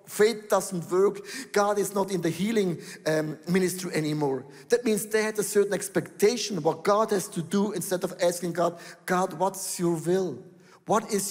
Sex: male